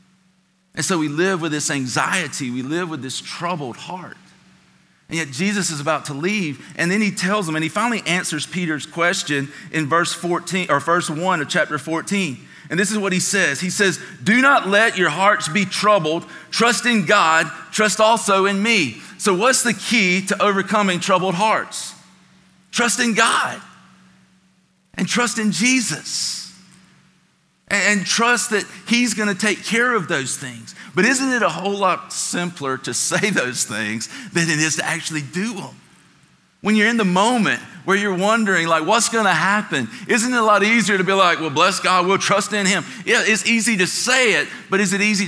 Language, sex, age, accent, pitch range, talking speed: English, male, 40-59, American, 170-210 Hz, 190 wpm